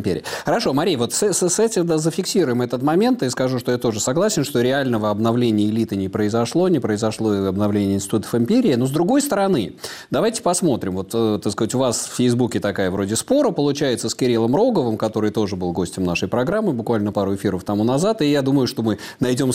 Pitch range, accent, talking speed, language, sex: 110-165 Hz, native, 195 wpm, Russian, male